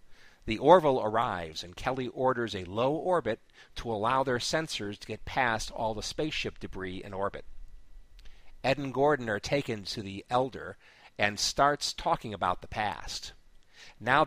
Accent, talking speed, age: American, 155 wpm, 50-69